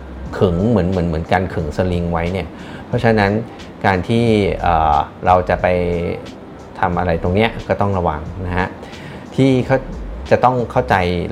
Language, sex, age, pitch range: Thai, male, 30-49, 85-105 Hz